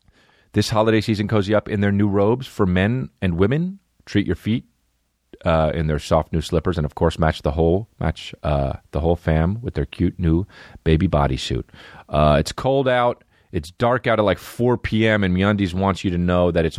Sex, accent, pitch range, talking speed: male, American, 80-125 Hz, 205 wpm